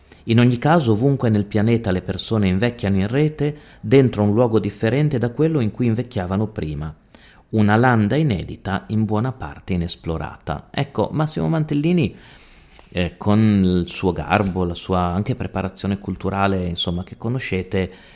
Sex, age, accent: male, 30-49, native